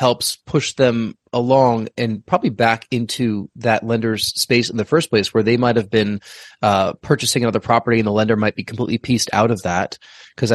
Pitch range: 105-120 Hz